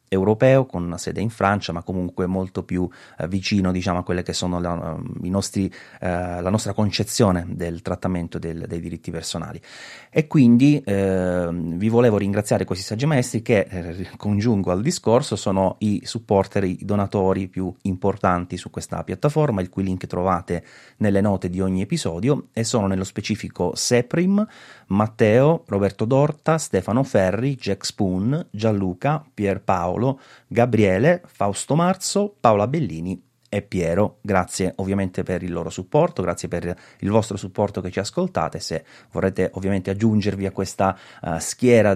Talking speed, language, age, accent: 150 wpm, Italian, 30-49, native